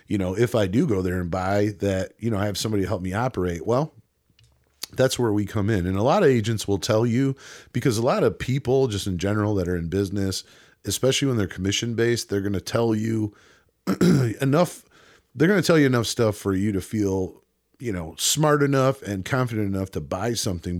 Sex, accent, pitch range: male, American, 90-115 Hz